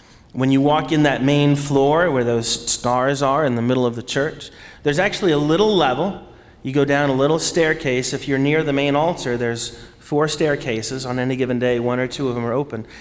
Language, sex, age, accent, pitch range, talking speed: English, male, 30-49, American, 120-150 Hz, 220 wpm